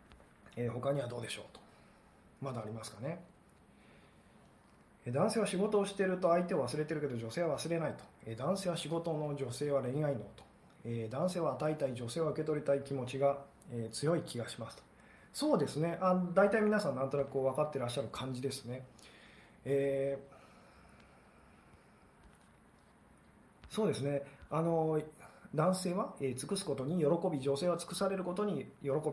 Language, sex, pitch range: Japanese, male, 135-170 Hz